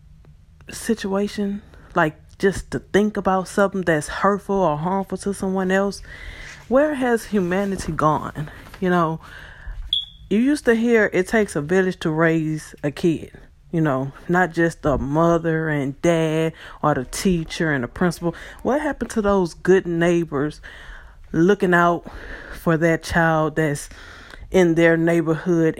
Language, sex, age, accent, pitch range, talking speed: English, female, 20-39, American, 145-195 Hz, 140 wpm